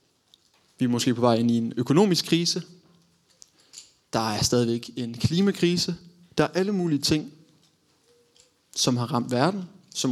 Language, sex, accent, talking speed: Danish, male, native, 150 wpm